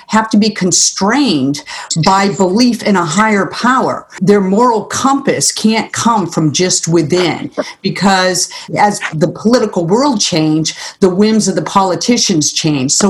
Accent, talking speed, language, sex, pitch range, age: American, 140 wpm, English, female, 175-215 Hz, 50-69